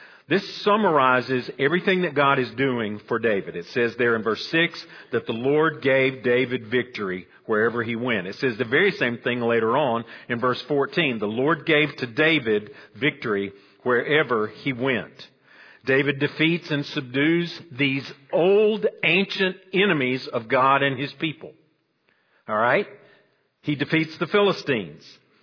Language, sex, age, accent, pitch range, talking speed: English, male, 50-69, American, 125-165 Hz, 150 wpm